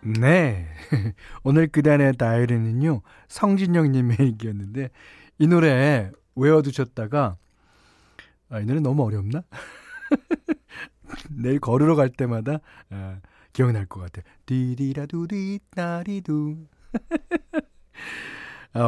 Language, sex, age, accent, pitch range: Korean, male, 40-59, native, 110-175 Hz